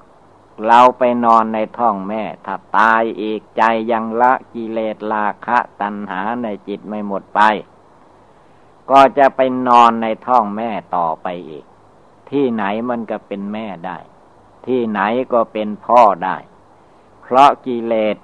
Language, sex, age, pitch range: Thai, male, 60-79, 100-120 Hz